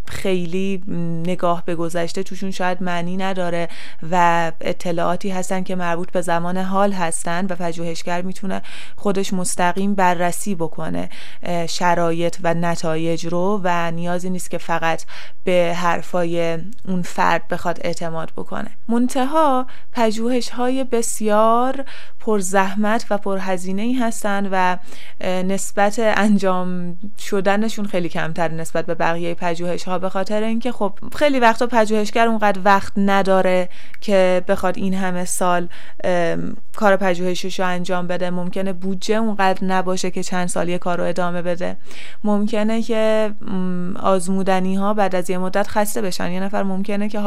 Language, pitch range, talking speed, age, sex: Persian, 175-205 Hz, 130 wpm, 20-39, female